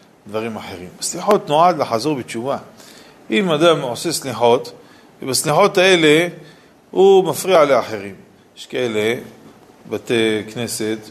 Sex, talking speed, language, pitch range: male, 105 wpm, Hebrew, 120-155 Hz